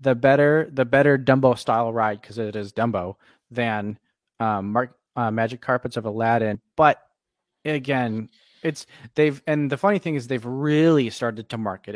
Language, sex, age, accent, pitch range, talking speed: English, male, 20-39, American, 115-140 Hz, 165 wpm